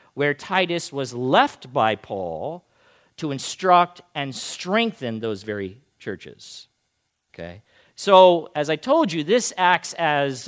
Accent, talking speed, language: American, 125 wpm, English